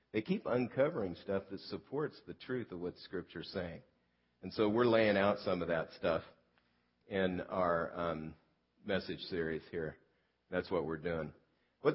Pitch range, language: 85-120 Hz, English